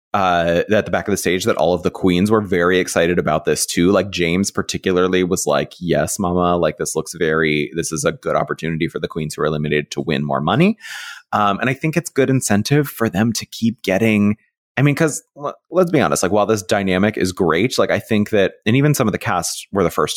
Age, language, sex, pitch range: 30-49, English, male, 85-110 Hz